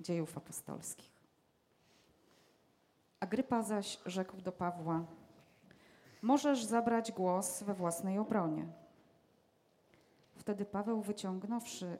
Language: Polish